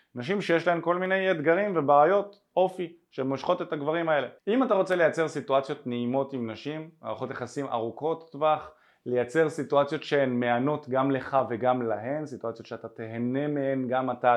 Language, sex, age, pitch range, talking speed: Hebrew, male, 20-39, 125-170 Hz, 160 wpm